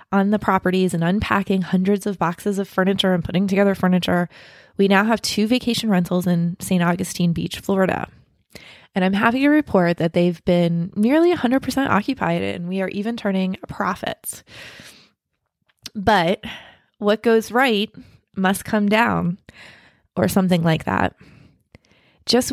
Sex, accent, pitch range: female, American, 180-215 Hz